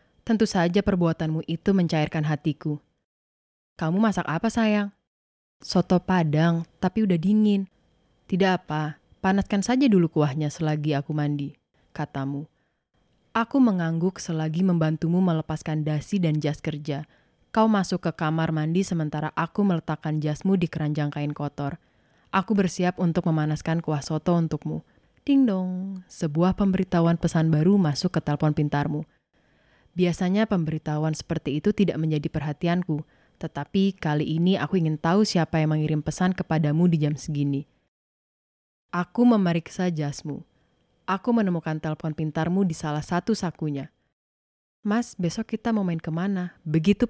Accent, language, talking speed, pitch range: native, Indonesian, 130 wpm, 155-190 Hz